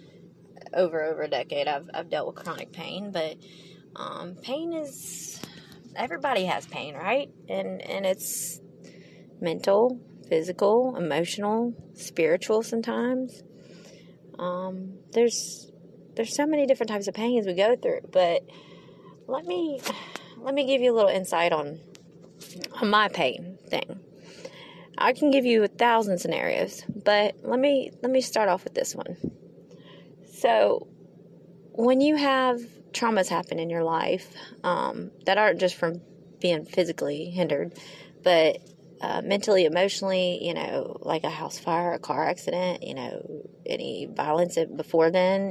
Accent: American